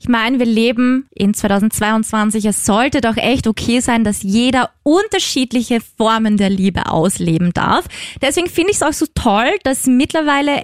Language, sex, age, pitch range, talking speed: German, female, 20-39, 215-250 Hz, 165 wpm